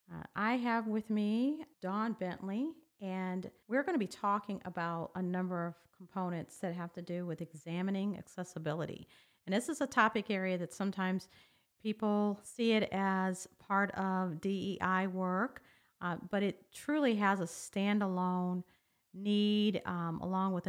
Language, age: English, 40-59